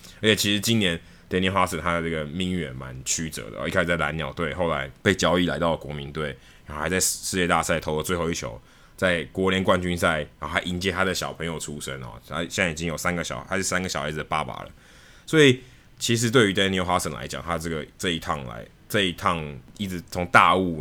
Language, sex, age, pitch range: Chinese, male, 20-39, 75-95 Hz